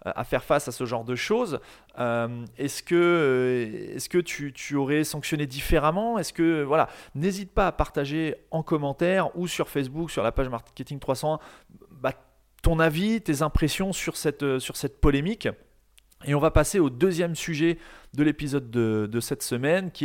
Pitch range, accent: 120-160 Hz, French